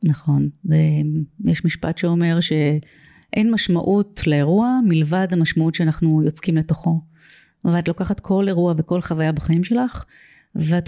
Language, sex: Hebrew, female